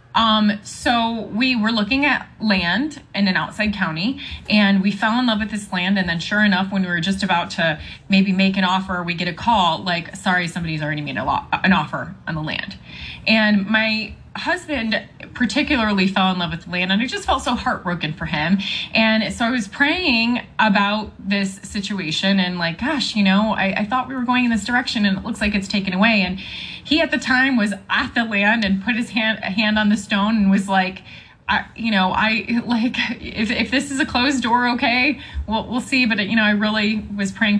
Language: English